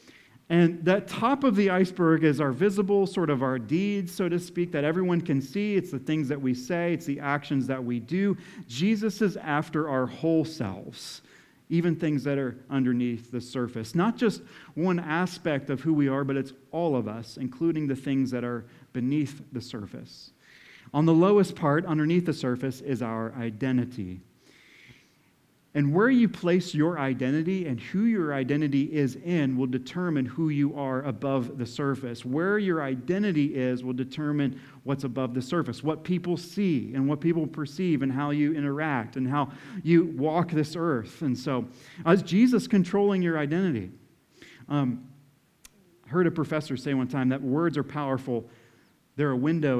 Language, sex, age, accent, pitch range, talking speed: English, male, 40-59, American, 130-170 Hz, 175 wpm